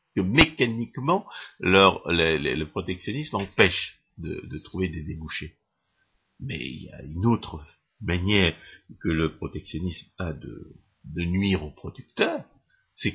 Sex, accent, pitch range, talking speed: male, French, 90-120 Hz, 135 wpm